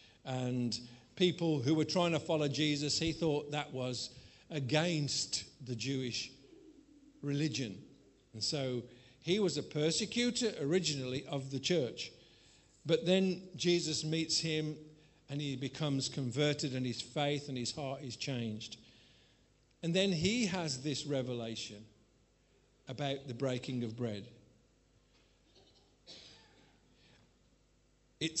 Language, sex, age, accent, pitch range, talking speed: English, male, 50-69, British, 125-165 Hz, 115 wpm